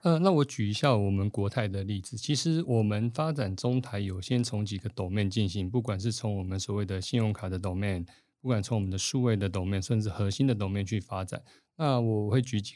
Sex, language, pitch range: male, Chinese, 100-120 Hz